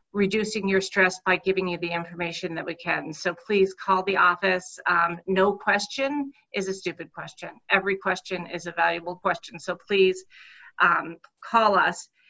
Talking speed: 165 wpm